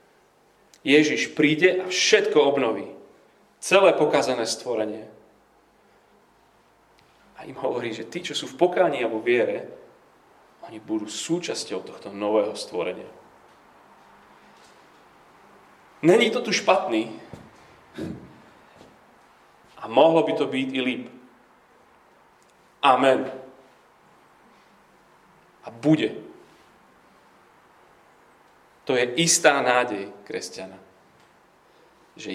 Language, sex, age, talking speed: Slovak, male, 40-59, 85 wpm